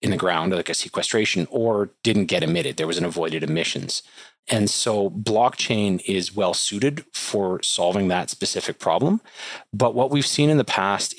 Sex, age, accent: male, 30-49, American